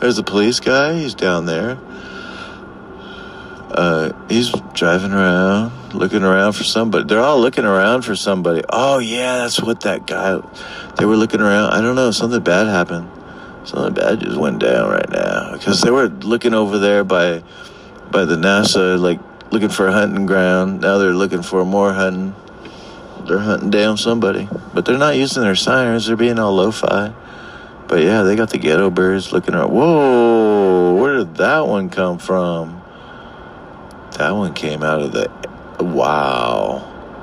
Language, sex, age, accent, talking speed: English, male, 50-69, American, 165 wpm